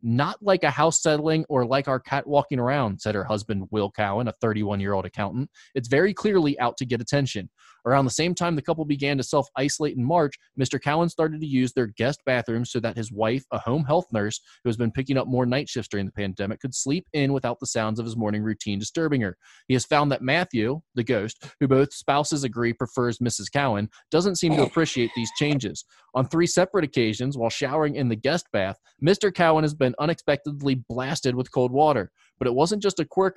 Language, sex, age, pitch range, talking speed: English, male, 20-39, 115-150 Hz, 220 wpm